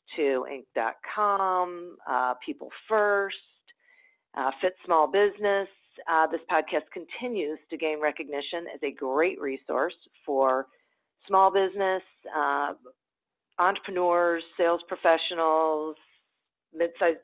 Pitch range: 145-185 Hz